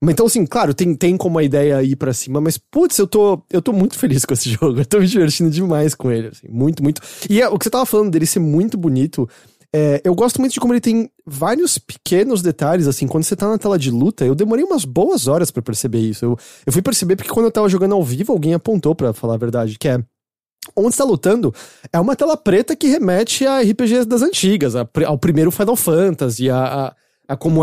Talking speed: 240 wpm